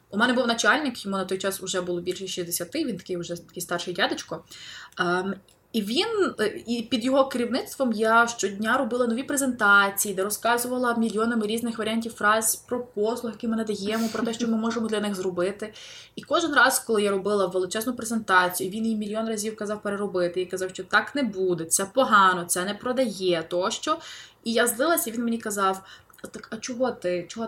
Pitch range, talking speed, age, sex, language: 185-240 Hz, 190 wpm, 20-39, female, Ukrainian